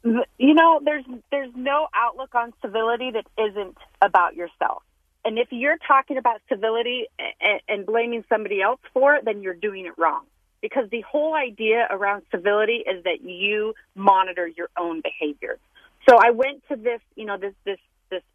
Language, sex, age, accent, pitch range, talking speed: English, female, 30-49, American, 185-240 Hz, 175 wpm